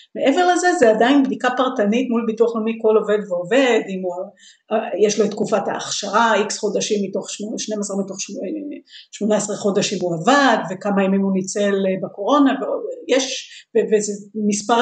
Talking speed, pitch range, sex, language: 150 wpm, 205-245 Hz, female, Hebrew